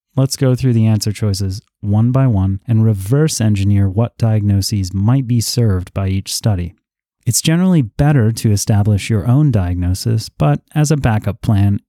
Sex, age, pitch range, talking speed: male, 30-49, 105-130 Hz, 165 wpm